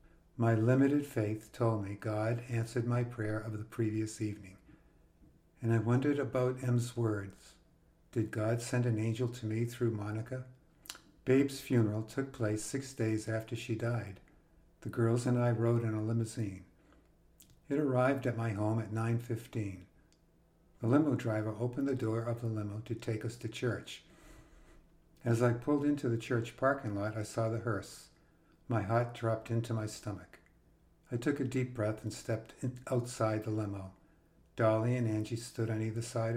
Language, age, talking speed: English, 60-79, 165 wpm